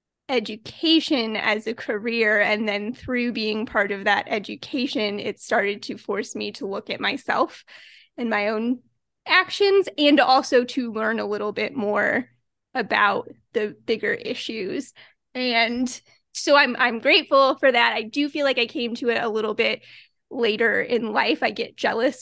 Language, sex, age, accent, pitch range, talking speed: English, female, 20-39, American, 235-330 Hz, 165 wpm